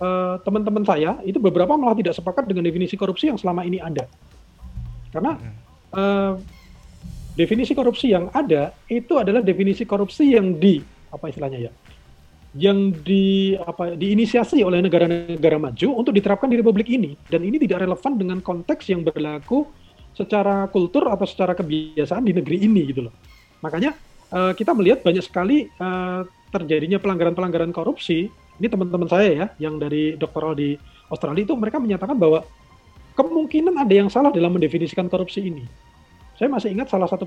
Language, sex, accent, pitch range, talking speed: English, male, Indonesian, 155-200 Hz, 155 wpm